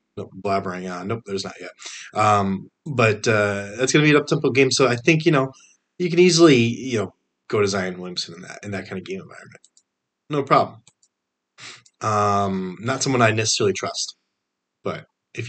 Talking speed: 190 wpm